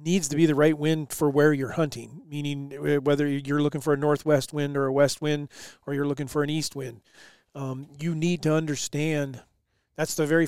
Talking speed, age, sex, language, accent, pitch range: 210 wpm, 40-59, male, English, American, 140-155 Hz